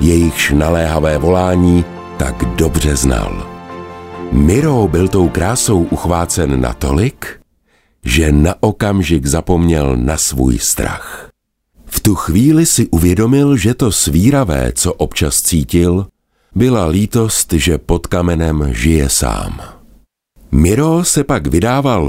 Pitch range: 80-95 Hz